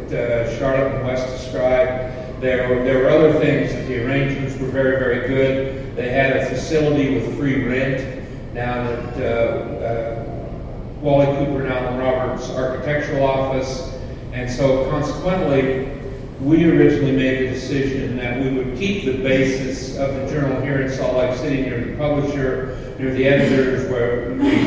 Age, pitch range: 50-69, 125-135 Hz